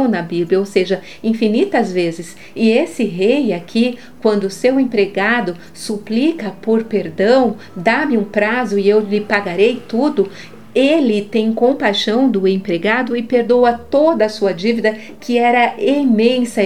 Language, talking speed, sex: Portuguese, 140 wpm, female